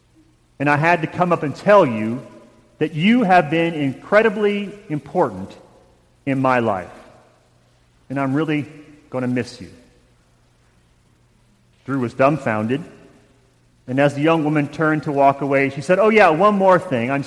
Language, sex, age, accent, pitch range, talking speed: English, male, 40-59, American, 125-170 Hz, 155 wpm